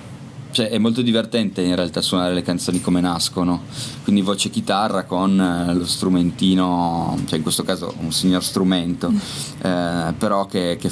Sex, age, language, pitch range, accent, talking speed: male, 20-39, Italian, 90-105 Hz, native, 150 wpm